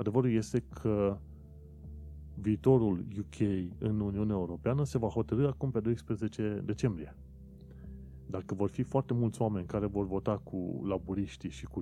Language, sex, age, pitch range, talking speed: Romanian, male, 30-49, 80-115 Hz, 140 wpm